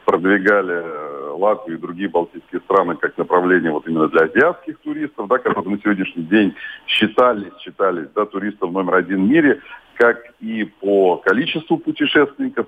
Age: 40-59